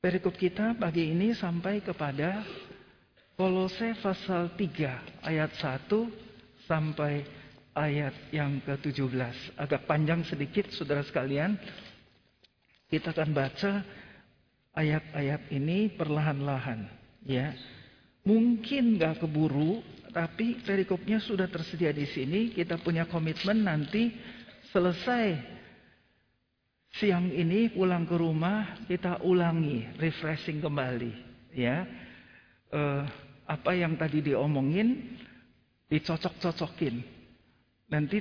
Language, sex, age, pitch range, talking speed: Indonesian, male, 50-69, 145-190 Hz, 95 wpm